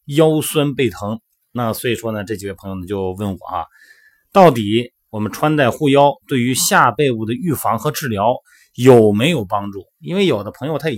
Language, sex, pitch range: Chinese, male, 105-150 Hz